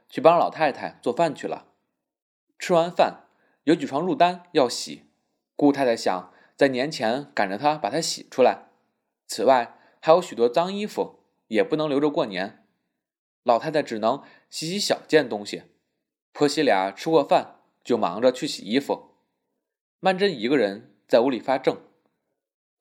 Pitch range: 125-205 Hz